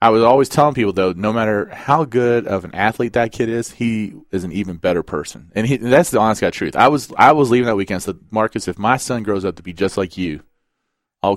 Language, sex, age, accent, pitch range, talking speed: English, male, 30-49, American, 100-125 Hz, 265 wpm